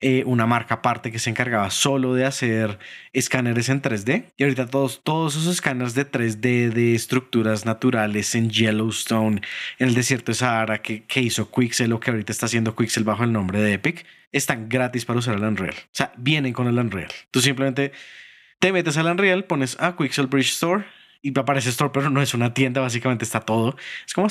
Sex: male